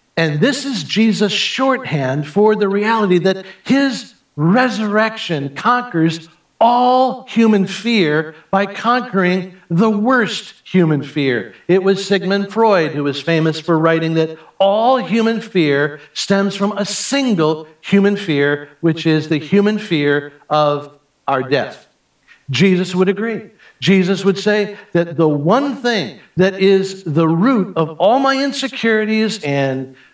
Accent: American